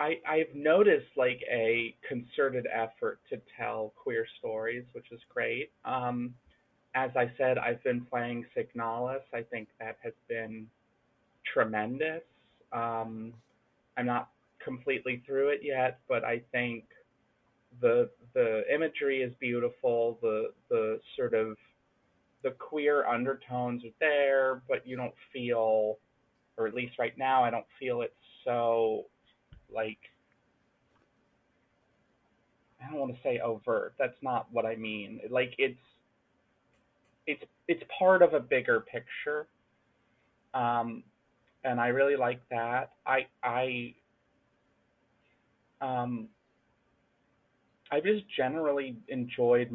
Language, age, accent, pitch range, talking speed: English, 30-49, American, 115-140 Hz, 120 wpm